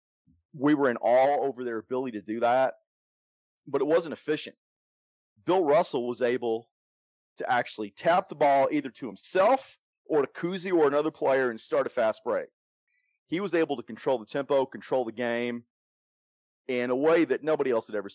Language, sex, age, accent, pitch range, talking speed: English, male, 40-59, American, 110-155 Hz, 180 wpm